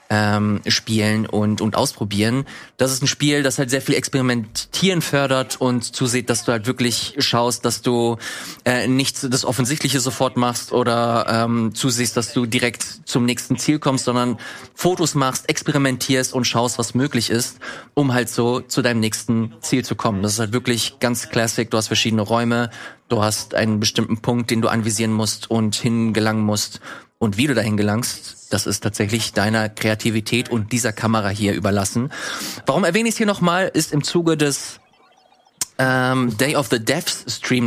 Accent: German